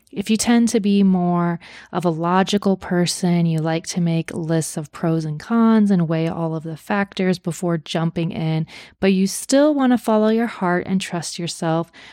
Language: English